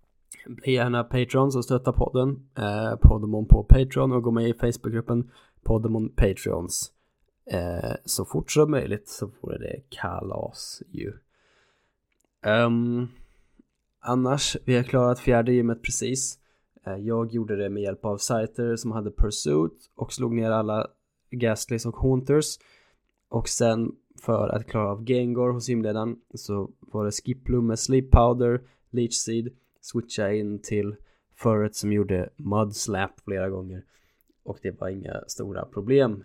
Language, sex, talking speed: Swedish, male, 145 wpm